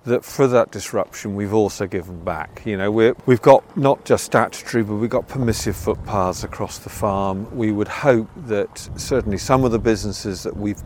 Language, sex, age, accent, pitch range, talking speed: English, male, 50-69, British, 100-115 Hz, 190 wpm